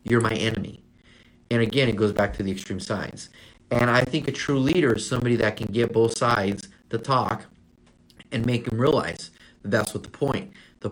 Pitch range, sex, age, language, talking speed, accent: 100-120 Hz, male, 30-49, English, 200 wpm, American